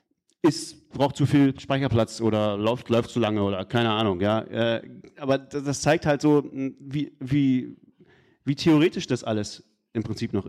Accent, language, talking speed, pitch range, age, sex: German, German, 145 wpm, 115-155 Hz, 30-49, male